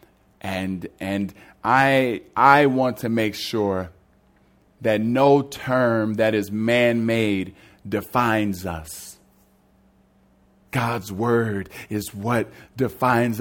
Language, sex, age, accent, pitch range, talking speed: English, male, 30-49, American, 100-135 Hz, 100 wpm